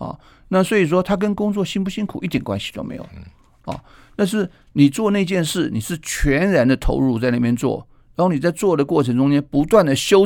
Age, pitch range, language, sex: 50-69, 120-185 Hz, Chinese, male